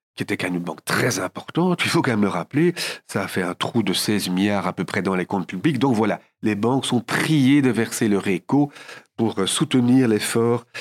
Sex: male